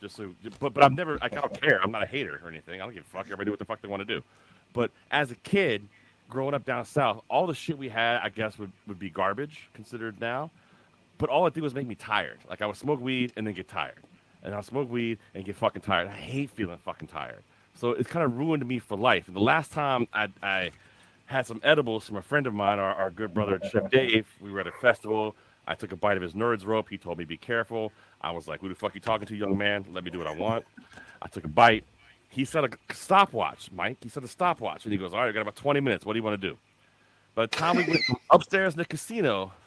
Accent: American